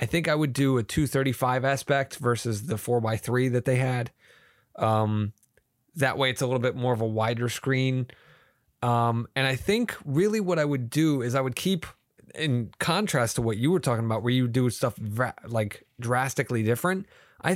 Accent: American